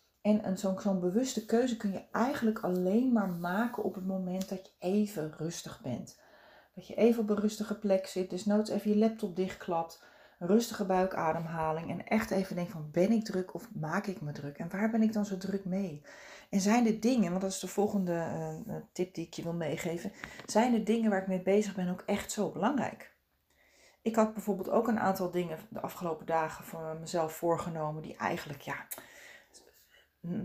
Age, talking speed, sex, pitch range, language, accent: 40-59, 195 wpm, female, 180-220 Hz, Dutch, Dutch